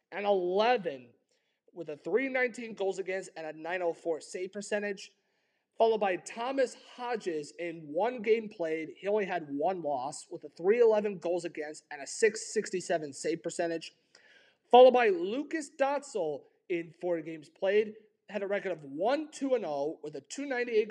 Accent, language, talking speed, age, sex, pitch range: American, English, 145 wpm, 30-49, male, 160-235 Hz